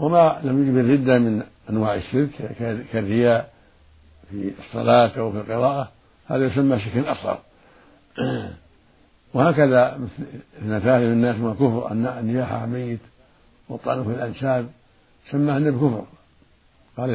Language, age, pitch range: Arabic, 60-79, 120-150 Hz